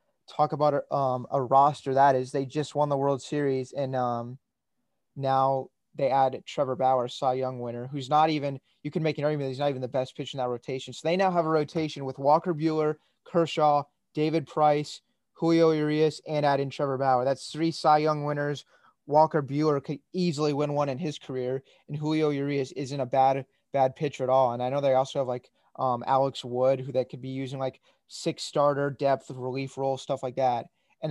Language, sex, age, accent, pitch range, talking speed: English, male, 20-39, American, 135-155 Hz, 210 wpm